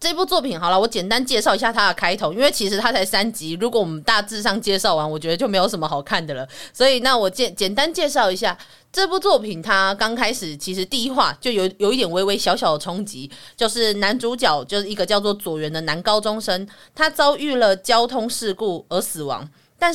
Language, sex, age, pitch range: Chinese, female, 30-49, 175-255 Hz